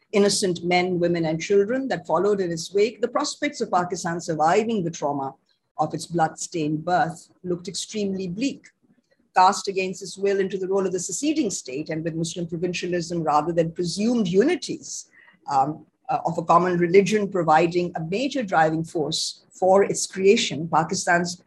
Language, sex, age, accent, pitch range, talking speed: English, female, 50-69, Indian, 160-205 Hz, 160 wpm